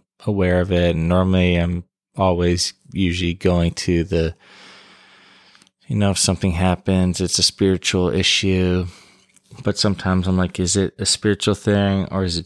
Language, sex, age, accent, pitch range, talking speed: English, male, 20-39, American, 90-100 Hz, 155 wpm